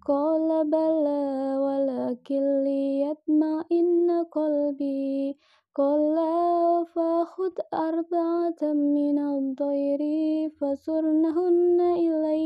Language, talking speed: Indonesian, 65 wpm